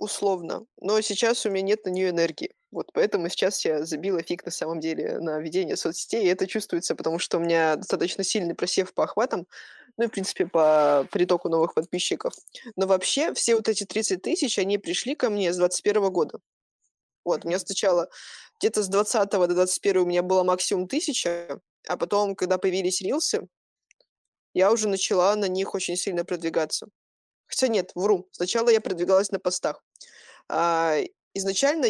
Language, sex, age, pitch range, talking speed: Russian, female, 20-39, 175-210 Hz, 170 wpm